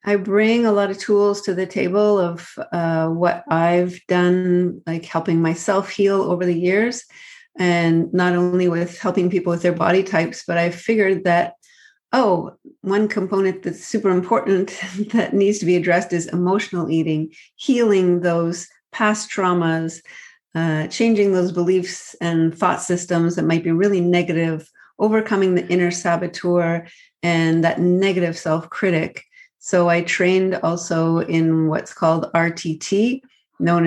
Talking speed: 145 wpm